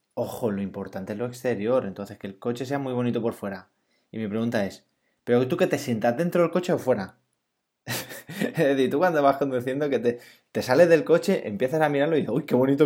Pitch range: 110-150 Hz